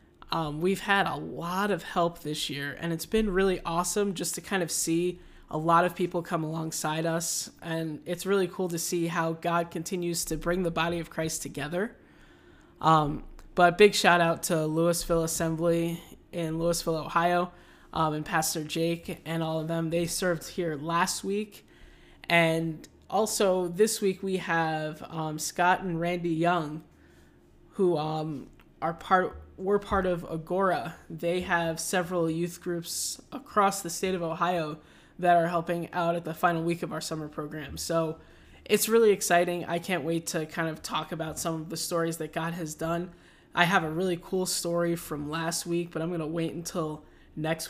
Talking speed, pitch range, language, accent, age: 180 wpm, 160-180 Hz, English, American, 10-29